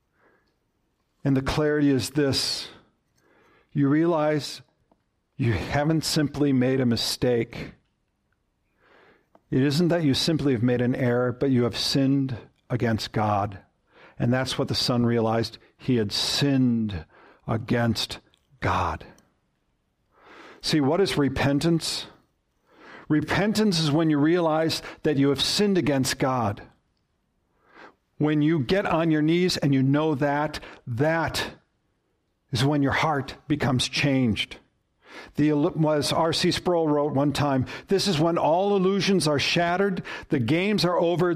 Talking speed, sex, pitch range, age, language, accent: 130 wpm, male, 130-175 Hz, 50-69, English, American